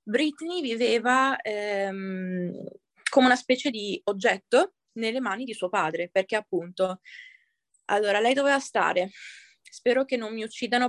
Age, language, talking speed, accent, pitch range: 20-39, Italian, 130 wpm, native, 200-250 Hz